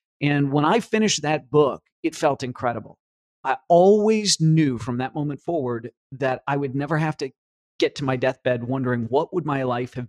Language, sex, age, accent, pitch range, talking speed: English, male, 40-59, American, 125-145 Hz, 190 wpm